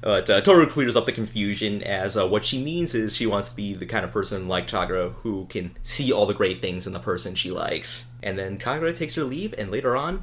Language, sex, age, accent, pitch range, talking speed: English, male, 30-49, American, 100-125 Hz, 260 wpm